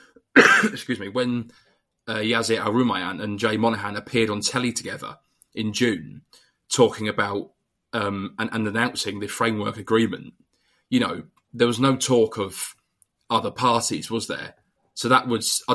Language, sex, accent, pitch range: English, male, British, 105-115 Hz